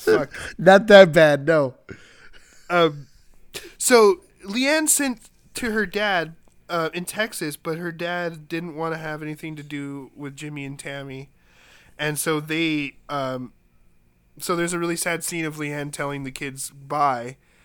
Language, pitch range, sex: English, 140-170 Hz, male